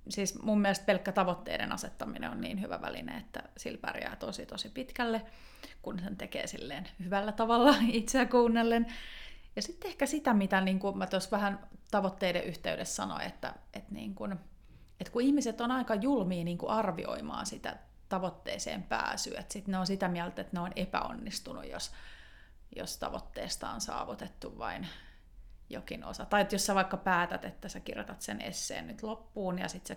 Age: 30-49